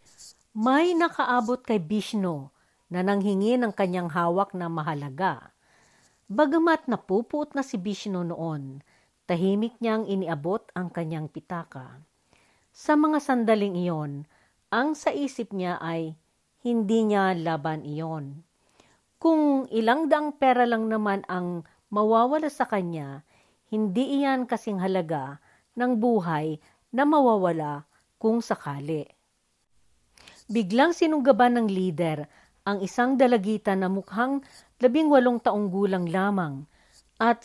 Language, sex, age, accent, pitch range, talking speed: Filipino, female, 50-69, native, 175-245 Hz, 110 wpm